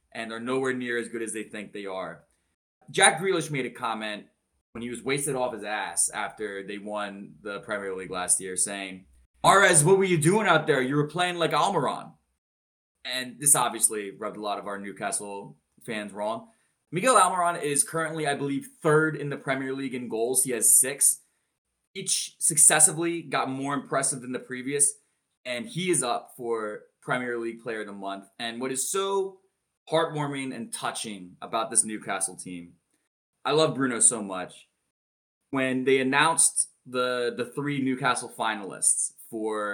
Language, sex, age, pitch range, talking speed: English, male, 20-39, 105-150 Hz, 175 wpm